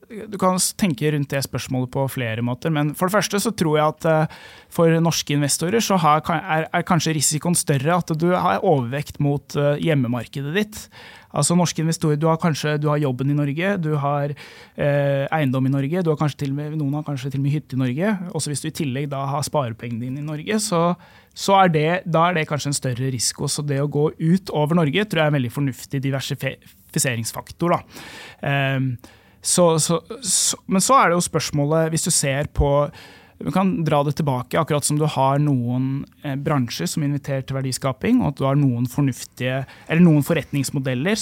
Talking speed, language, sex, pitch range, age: 195 wpm, English, male, 135-165 Hz, 20-39